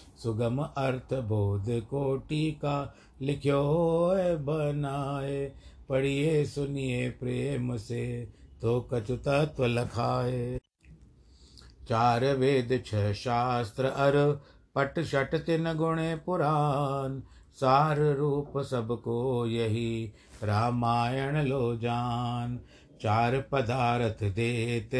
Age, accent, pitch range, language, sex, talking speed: 50-69, native, 120-140 Hz, Hindi, male, 85 wpm